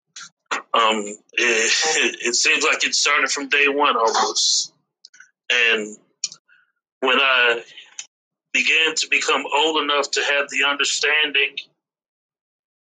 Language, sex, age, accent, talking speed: English, male, 40-59, American, 105 wpm